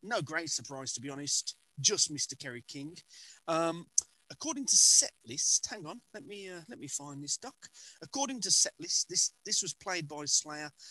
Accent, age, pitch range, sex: British, 40-59, 145-190 Hz, male